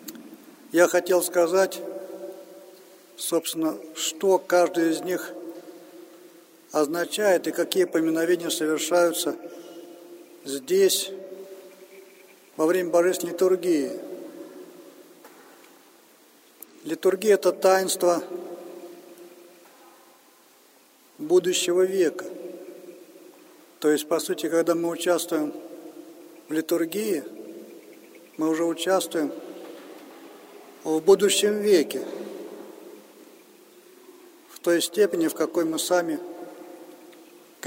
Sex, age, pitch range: male, 50-69, 175-220 Hz